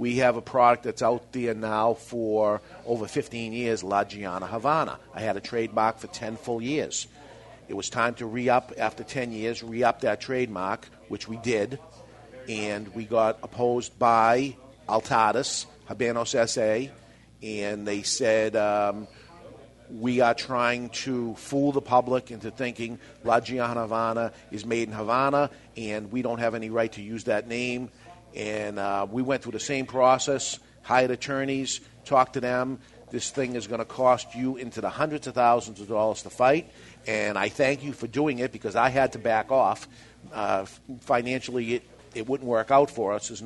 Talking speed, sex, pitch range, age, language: 175 wpm, male, 110-130 Hz, 50-69, English